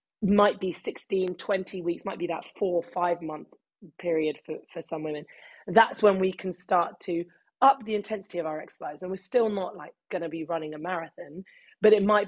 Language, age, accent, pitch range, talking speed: English, 30-49, British, 165-200 Hz, 210 wpm